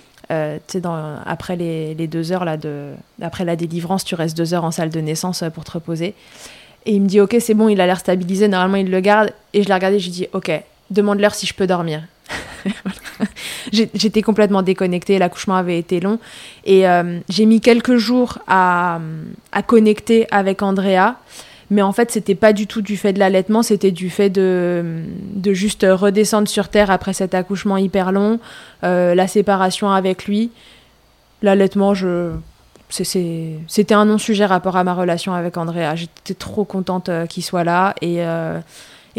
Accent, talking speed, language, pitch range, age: French, 190 wpm, French, 170-200 Hz, 20-39